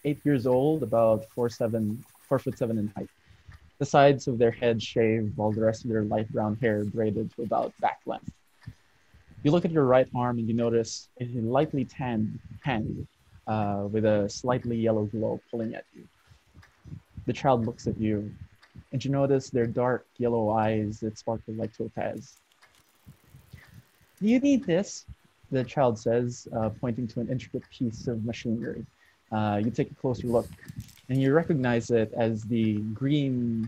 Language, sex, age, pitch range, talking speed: English, male, 20-39, 110-135 Hz, 170 wpm